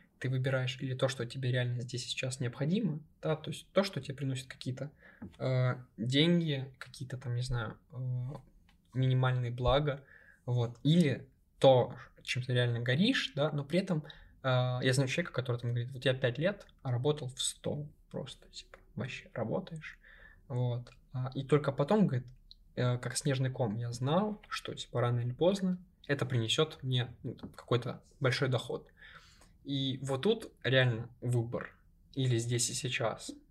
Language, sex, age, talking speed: Russian, male, 20-39, 165 wpm